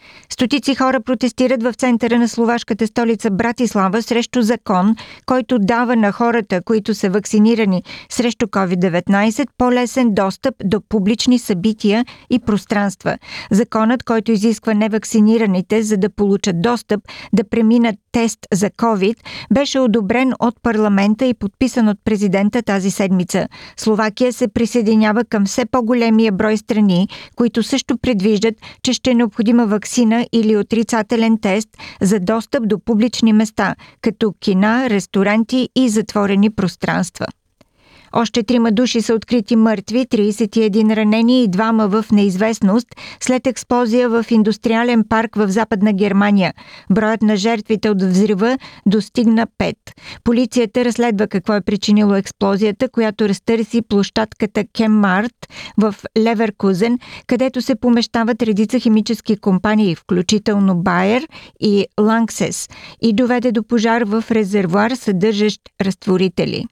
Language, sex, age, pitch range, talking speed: Bulgarian, female, 50-69, 210-240 Hz, 125 wpm